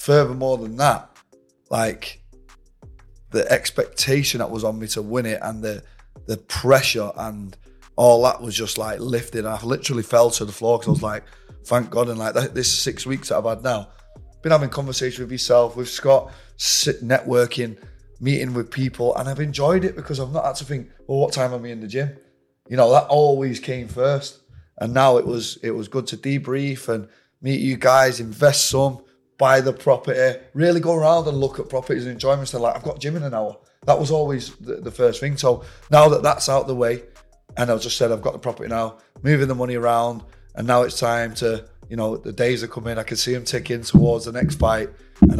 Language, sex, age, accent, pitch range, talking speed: English, male, 20-39, British, 110-135 Hz, 220 wpm